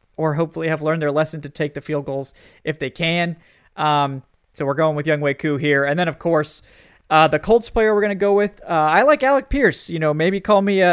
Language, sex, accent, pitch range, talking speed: English, male, American, 145-180 Hz, 255 wpm